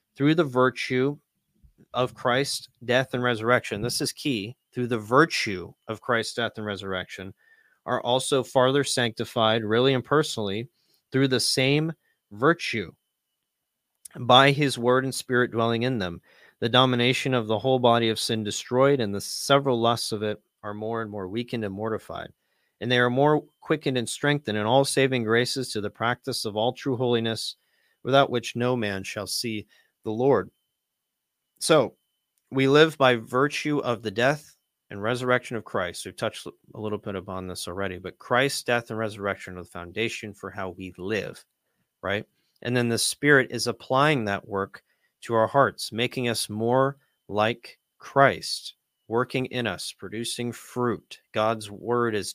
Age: 30-49